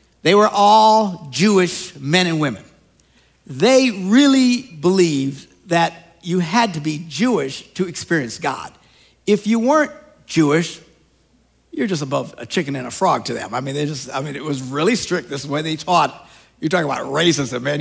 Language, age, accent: English, 60-79, American